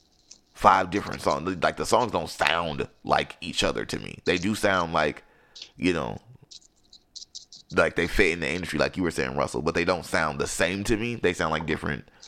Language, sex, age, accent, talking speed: English, male, 20-39, American, 205 wpm